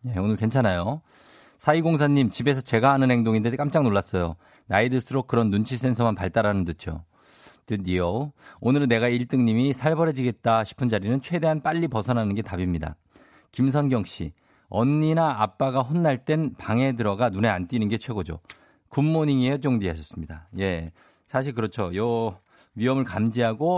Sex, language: male, Korean